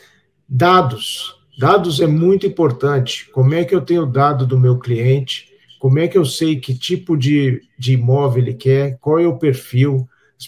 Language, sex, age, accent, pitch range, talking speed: Portuguese, male, 50-69, Brazilian, 125-145 Hz, 180 wpm